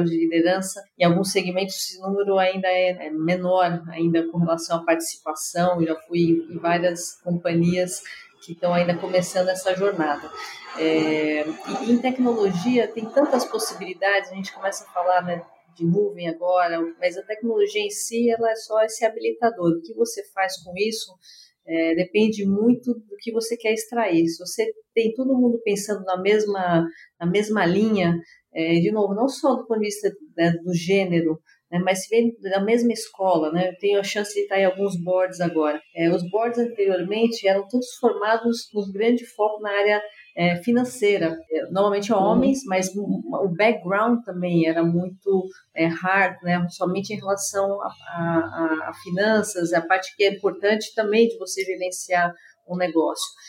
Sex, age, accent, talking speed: female, 40-59, Brazilian, 170 wpm